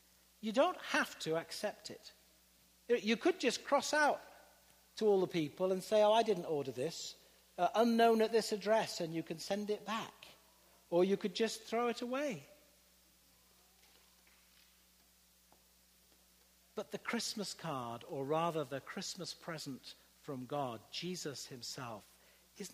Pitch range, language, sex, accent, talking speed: 135-210 Hz, English, male, British, 145 wpm